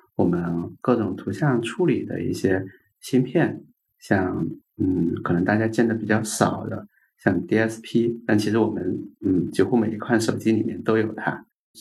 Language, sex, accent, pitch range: Chinese, male, native, 95-115 Hz